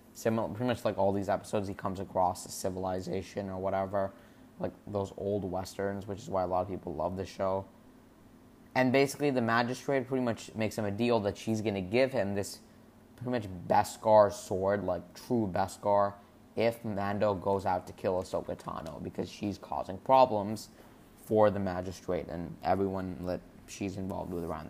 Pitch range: 100-115 Hz